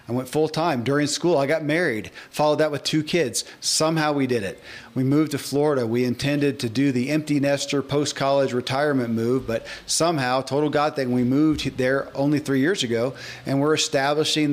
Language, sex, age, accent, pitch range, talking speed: English, male, 40-59, American, 130-155 Hz, 195 wpm